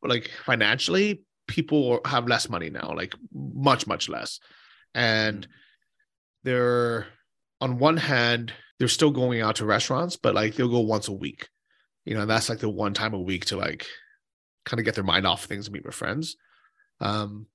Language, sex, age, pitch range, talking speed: English, male, 30-49, 105-140 Hz, 180 wpm